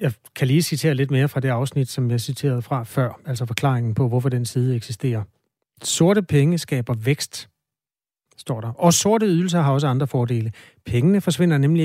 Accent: native